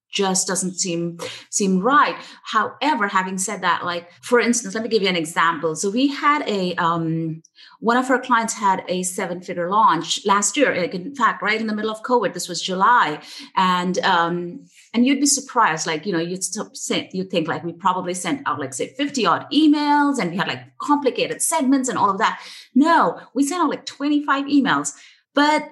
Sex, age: female, 30-49